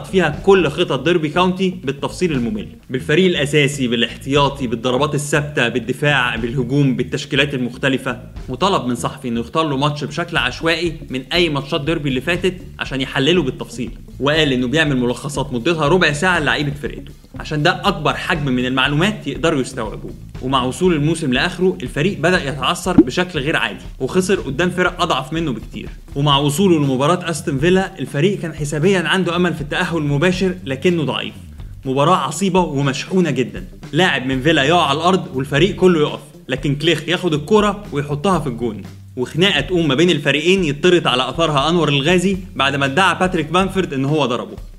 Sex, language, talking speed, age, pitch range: male, Arabic, 160 wpm, 20-39, 135-180 Hz